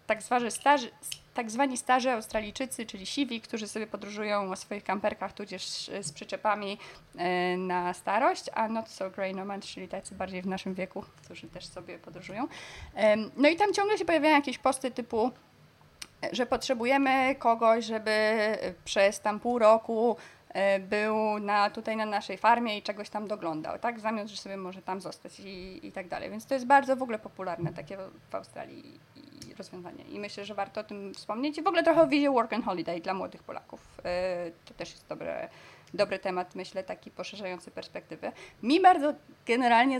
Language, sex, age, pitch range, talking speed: Polish, female, 20-39, 195-240 Hz, 175 wpm